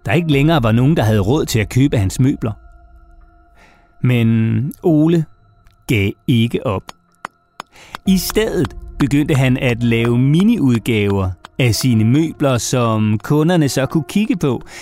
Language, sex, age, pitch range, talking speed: Danish, male, 30-49, 115-175 Hz, 140 wpm